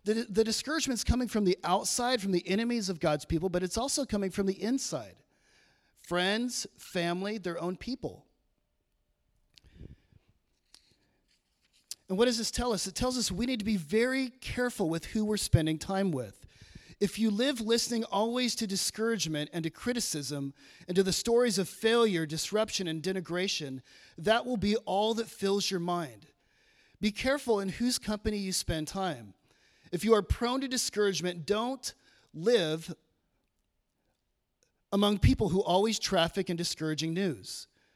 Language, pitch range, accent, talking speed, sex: English, 165-220 Hz, American, 155 wpm, male